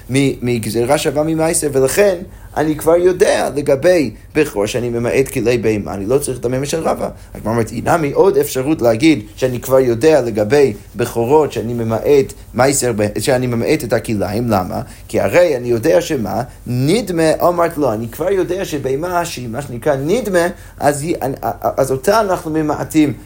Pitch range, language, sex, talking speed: 115-160 Hz, Hebrew, male, 155 wpm